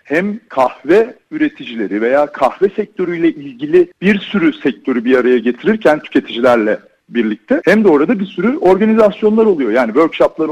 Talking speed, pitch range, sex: 135 wpm, 145-220 Hz, male